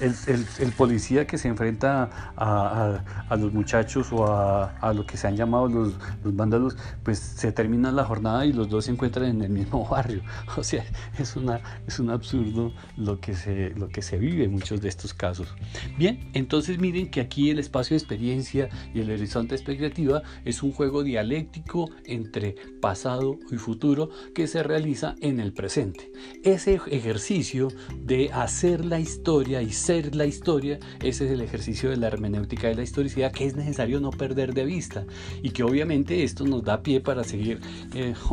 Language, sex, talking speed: Spanish, male, 190 wpm